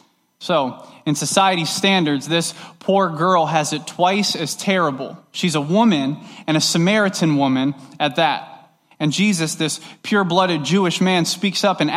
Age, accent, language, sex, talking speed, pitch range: 20-39, American, English, male, 150 wpm, 150-190 Hz